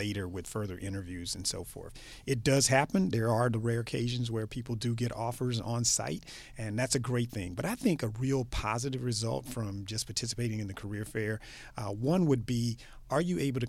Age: 40-59